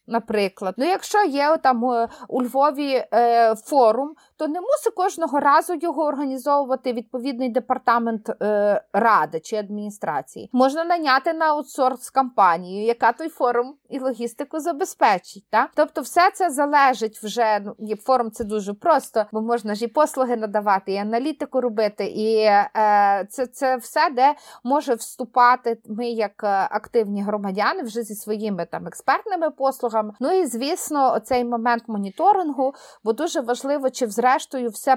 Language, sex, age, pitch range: Ukrainian, female, 30-49, 220-300 Hz